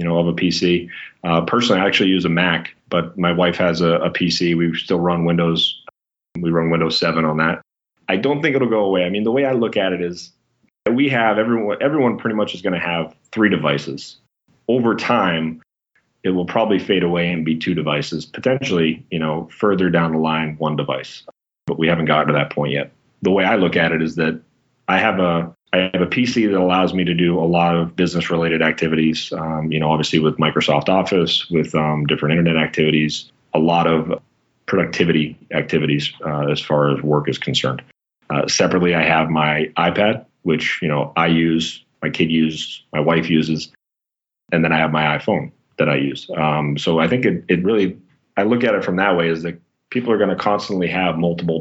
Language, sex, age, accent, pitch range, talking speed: English, male, 30-49, American, 80-90 Hz, 215 wpm